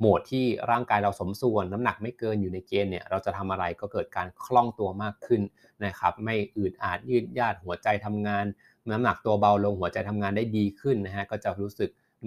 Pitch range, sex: 100-115 Hz, male